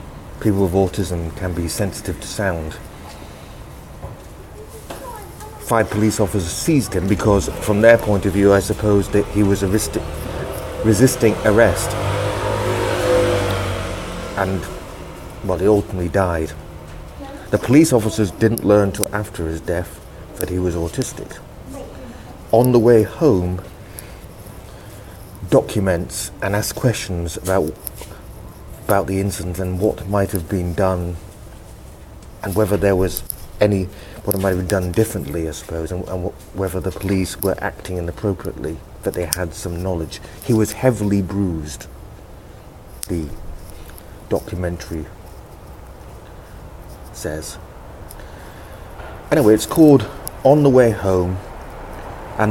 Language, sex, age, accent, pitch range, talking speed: English, male, 30-49, British, 90-105 Hz, 120 wpm